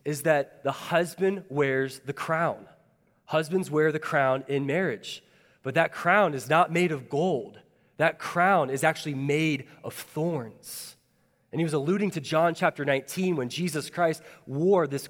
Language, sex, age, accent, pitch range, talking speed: English, male, 20-39, American, 125-155 Hz, 165 wpm